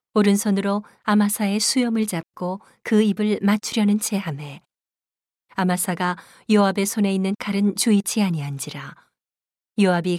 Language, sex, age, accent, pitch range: Korean, female, 40-59, native, 175-210 Hz